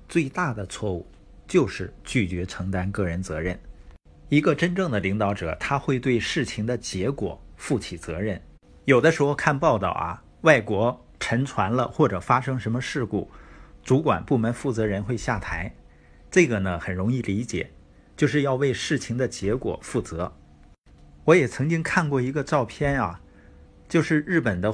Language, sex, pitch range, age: Chinese, male, 90-140 Hz, 50-69